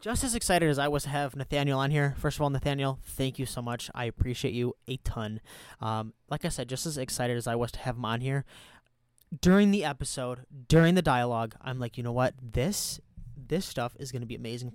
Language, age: English, 20-39